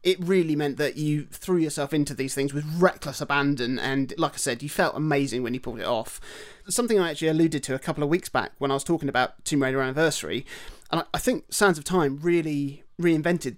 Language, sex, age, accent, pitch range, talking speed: English, male, 30-49, British, 140-170 Hz, 225 wpm